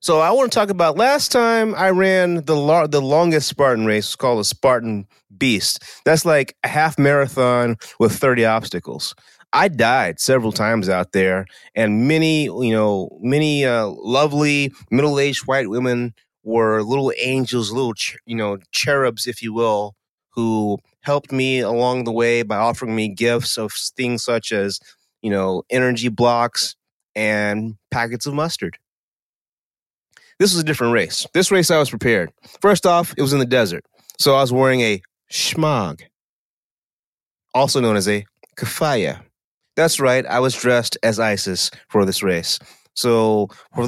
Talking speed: 160 wpm